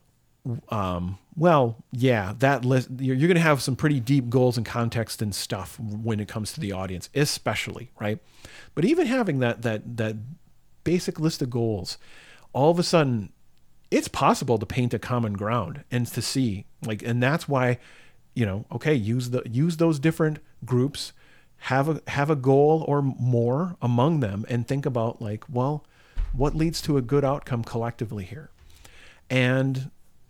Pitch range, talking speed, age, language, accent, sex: 110-145 Hz, 165 wpm, 40-59, English, American, male